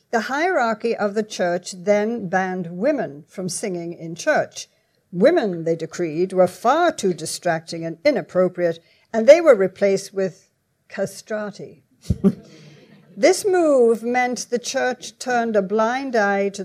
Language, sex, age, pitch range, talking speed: English, female, 60-79, 185-235 Hz, 135 wpm